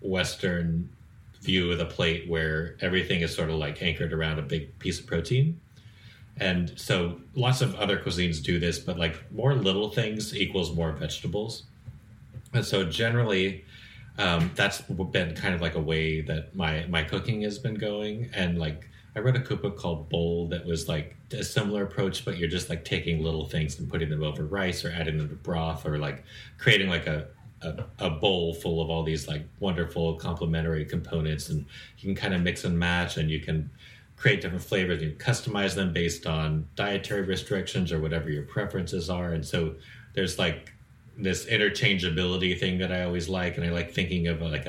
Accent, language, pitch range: American, English, 80-105 Hz